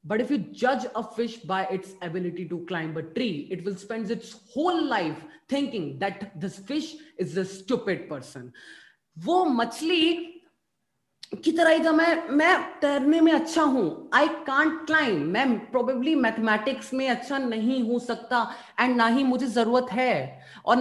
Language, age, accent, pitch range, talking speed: Hindi, 30-49, native, 205-265 Hz, 165 wpm